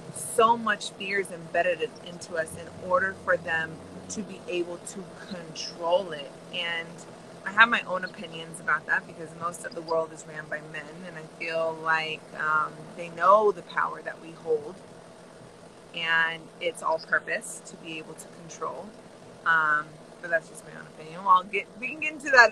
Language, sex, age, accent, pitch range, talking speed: English, female, 20-39, American, 160-205 Hz, 175 wpm